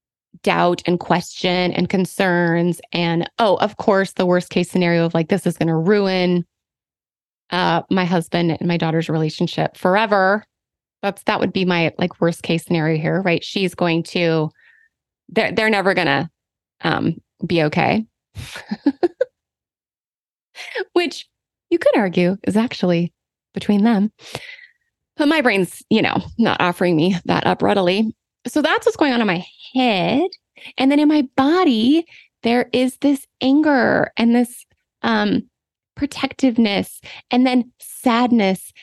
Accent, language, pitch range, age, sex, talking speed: American, English, 175-255 Hz, 20-39, female, 145 wpm